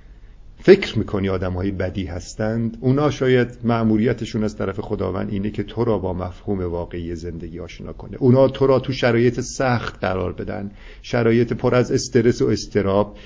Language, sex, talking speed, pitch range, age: Persian, male, 160 wpm, 100-115 Hz, 50-69